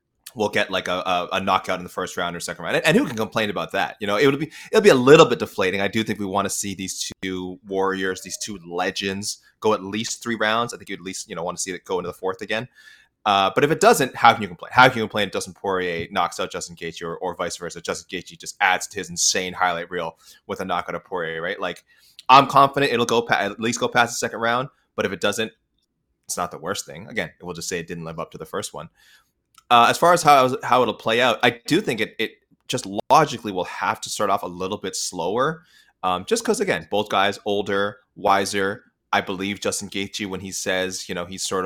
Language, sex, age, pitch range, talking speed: English, male, 20-39, 90-110 Hz, 260 wpm